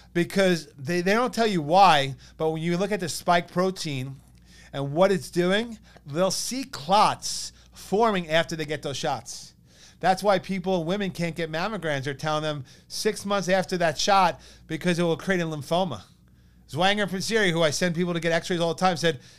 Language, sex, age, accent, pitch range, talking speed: English, male, 40-59, American, 135-180 Hz, 190 wpm